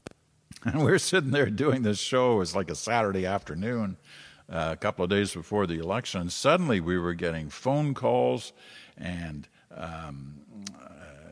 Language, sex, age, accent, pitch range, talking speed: English, male, 50-69, American, 85-125 Hz, 160 wpm